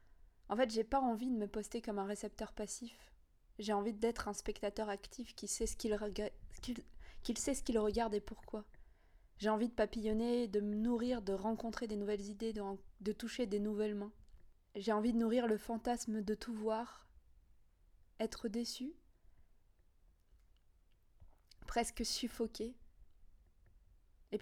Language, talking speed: French, 155 wpm